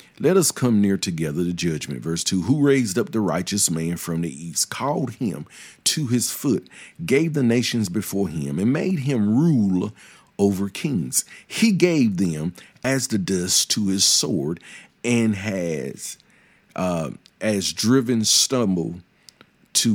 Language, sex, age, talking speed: English, male, 50-69, 155 wpm